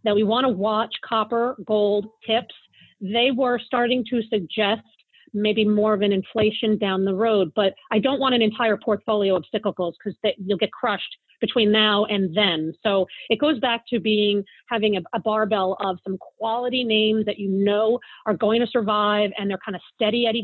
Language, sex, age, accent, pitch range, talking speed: English, female, 40-59, American, 205-240 Hz, 190 wpm